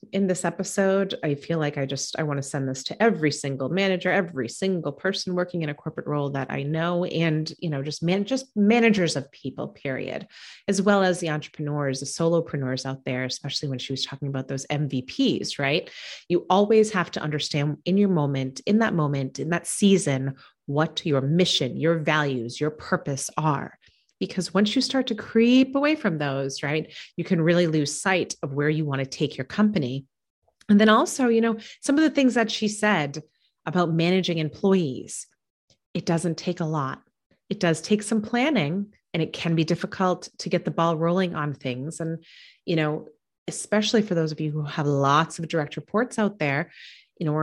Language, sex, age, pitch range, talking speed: English, female, 30-49, 145-195 Hz, 195 wpm